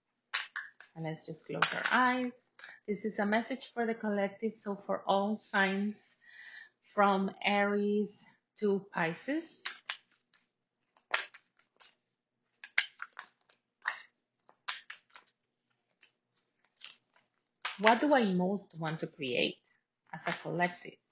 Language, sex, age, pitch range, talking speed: English, female, 30-49, 165-205 Hz, 85 wpm